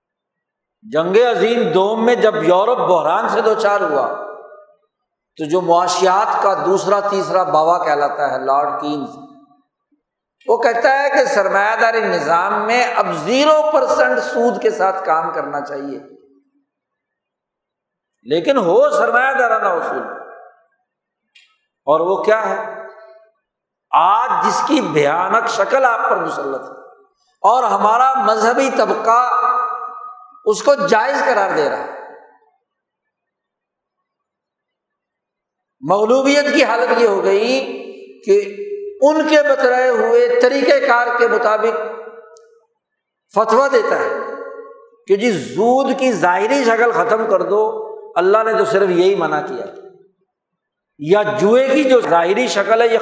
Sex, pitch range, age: male, 195-310 Hz, 60-79